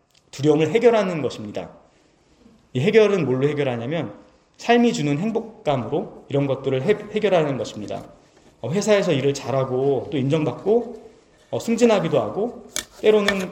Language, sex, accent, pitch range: Korean, male, native, 135-195 Hz